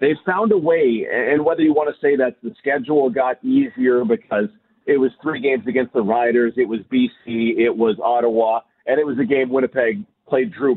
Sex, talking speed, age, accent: male, 205 wpm, 40-59, American